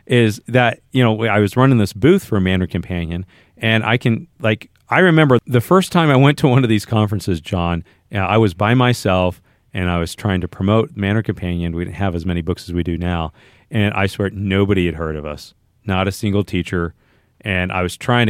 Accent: American